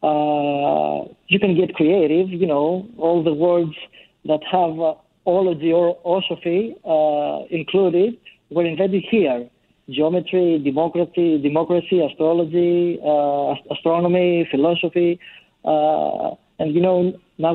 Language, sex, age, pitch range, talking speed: English, male, 40-59, 150-175 Hz, 120 wpm